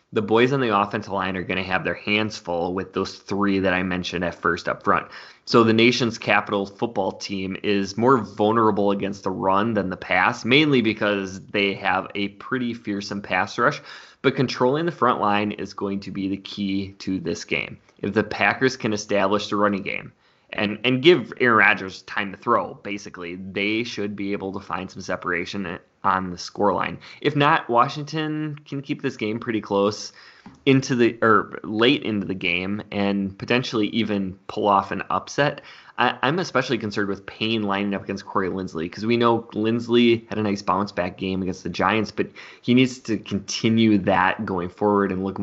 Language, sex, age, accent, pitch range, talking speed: English, male, 20-39, American, 95-115 Hz, 195 wpm